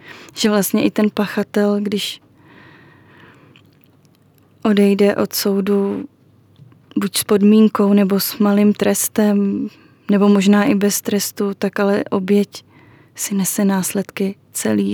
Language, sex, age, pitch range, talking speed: Czech, female, 20-39, 145-205 Hz, 115 wpm